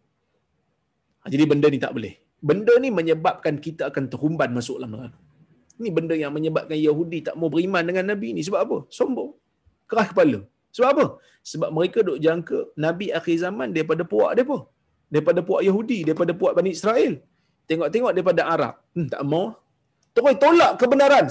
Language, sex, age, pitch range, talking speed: Malayalam, male, 30-49, 150-210 Hz, 165 wpm